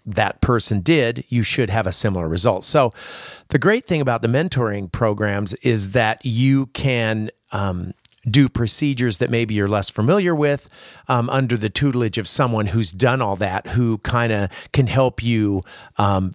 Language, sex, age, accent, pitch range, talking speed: English, male, 40-59, American, 105-135 Hz, 175 wpm